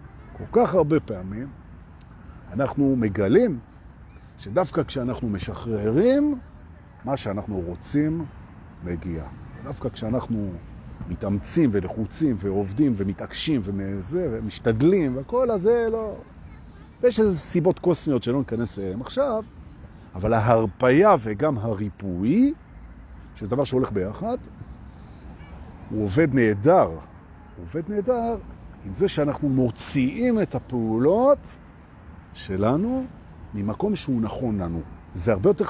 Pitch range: 95-150 Hz